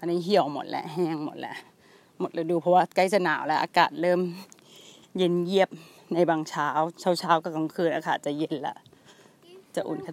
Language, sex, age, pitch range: Thai, female, 30-49, 170-200 Hz